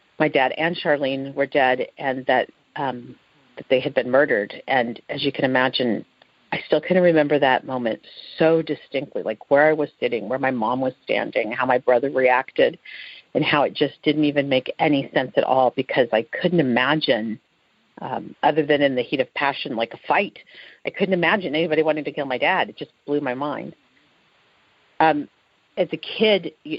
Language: English